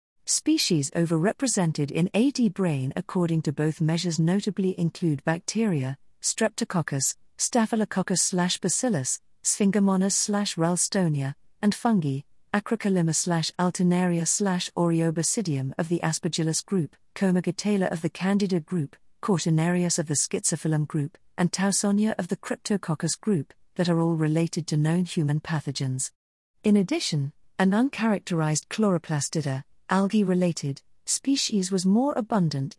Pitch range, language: 155-205 Hz, English